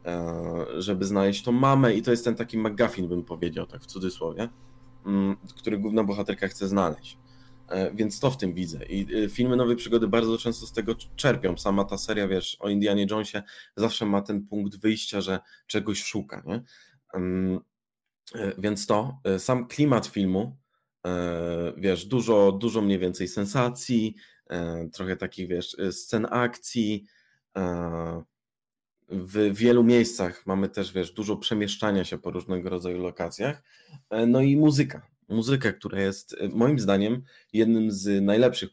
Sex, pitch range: male, 95-120 Hz